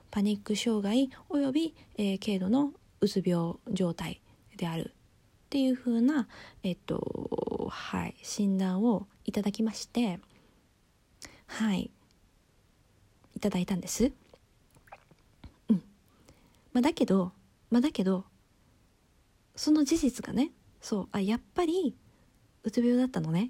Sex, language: female, Japanese